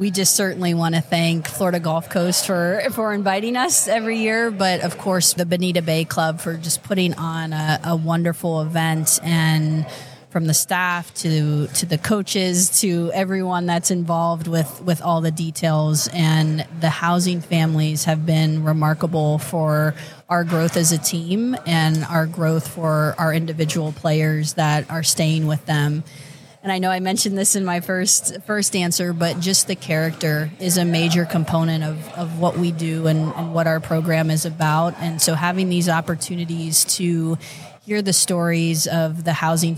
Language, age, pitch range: English, 30-49, 160-180 Hz